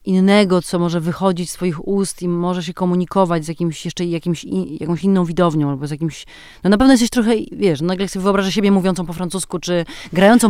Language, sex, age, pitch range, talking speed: Polish, female, 30-49, 165-195 Hz, 215 wpm